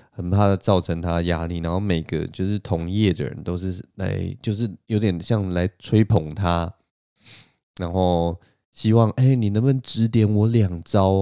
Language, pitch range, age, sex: Chinese, 90-110 Hz, 20-39, male